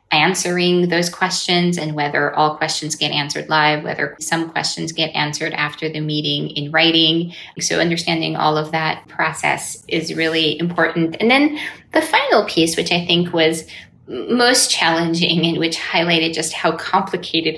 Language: English